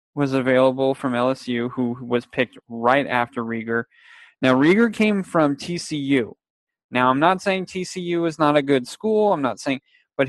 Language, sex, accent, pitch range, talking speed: English, male, American, 130-170 Hz, 170 wpm